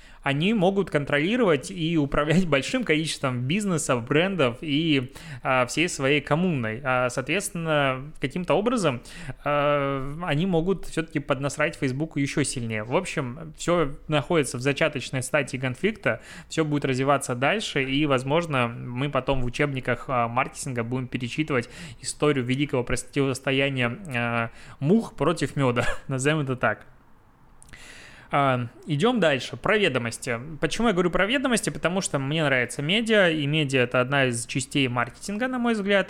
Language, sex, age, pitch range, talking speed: Russian, male, 20-39, 130-160 Hz, 130 wpm